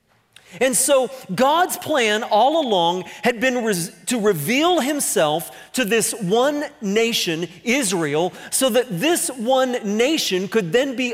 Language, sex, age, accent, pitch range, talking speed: English, male, 40-59, American, 190-275 Hz, 130 wpm